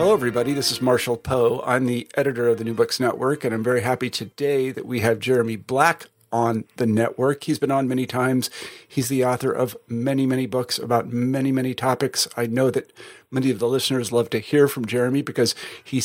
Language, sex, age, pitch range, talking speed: English, male, 50-69, 120-140 Hz, 215 wpm